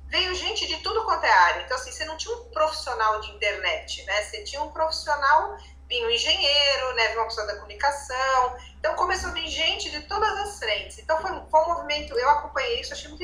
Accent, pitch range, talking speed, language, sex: Brazilian, 210-335 Hz, 220 wpm, Portuguese, female